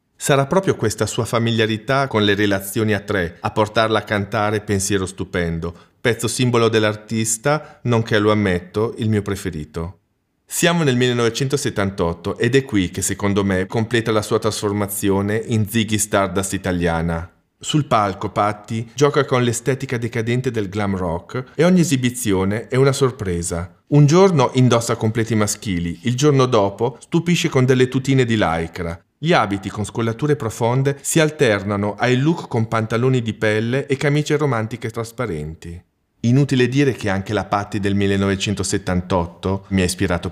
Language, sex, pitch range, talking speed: Italian, male, 100-125 Hz, 150 wpm